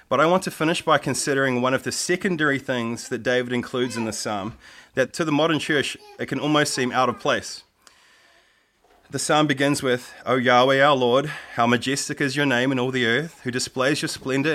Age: 20-39